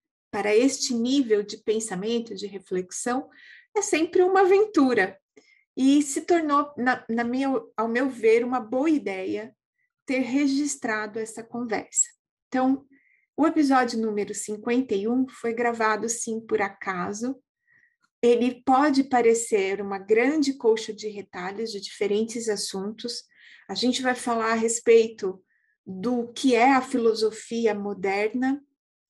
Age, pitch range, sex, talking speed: 30-49, 210-260 Hz, female, 120 wpm